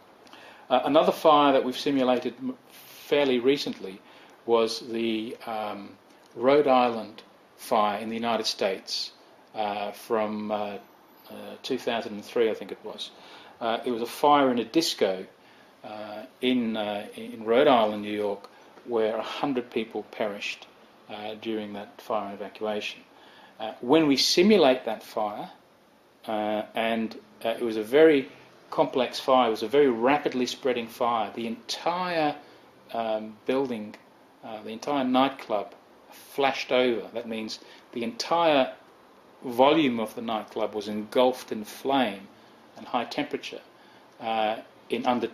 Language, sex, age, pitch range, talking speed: English, male, 40-59, 110-125 Hz, 135 wpm